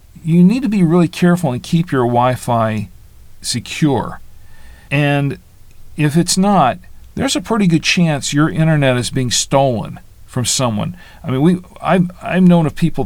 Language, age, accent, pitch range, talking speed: English, 50-69, American, 120-160 Hz, 165 wpm